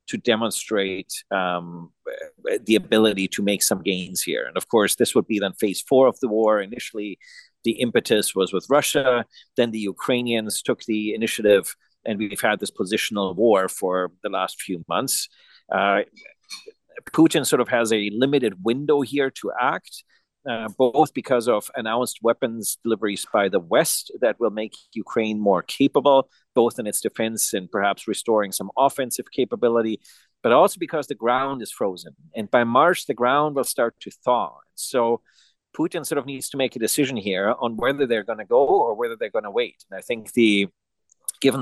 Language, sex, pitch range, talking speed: English, male, 105-140 Hz, 180 wpm